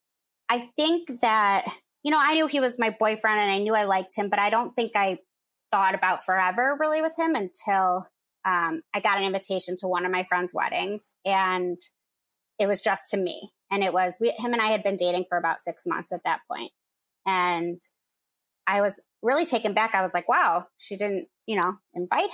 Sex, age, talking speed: female, 20-39, 205 wpm